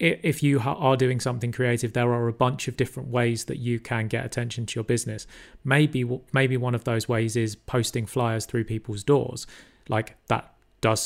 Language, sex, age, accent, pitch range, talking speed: English, male, 30-49, British, 115-135 Hz, 195 wpm